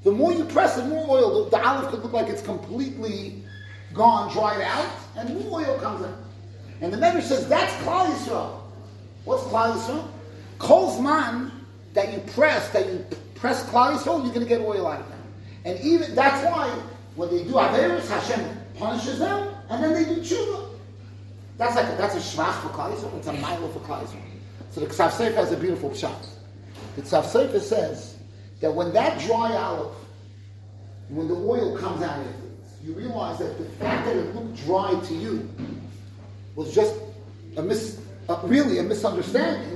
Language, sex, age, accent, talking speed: English, male, 30-49, American, 175 wpm